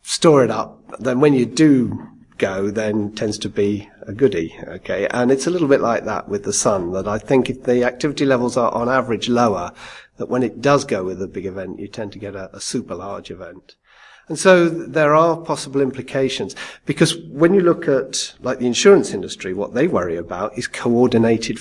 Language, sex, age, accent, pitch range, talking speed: English, male, 40-59, British, 105-135 Hz, 210 wpm